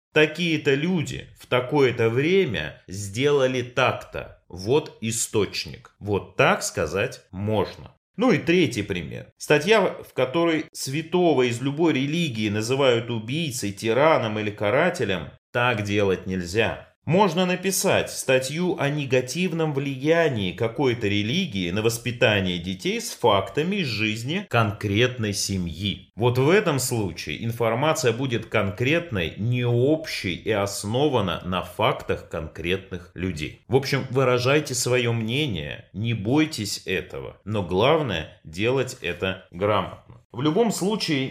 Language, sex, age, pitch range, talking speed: Russian, male, 30-49, 105-145 Hz, 115 wpm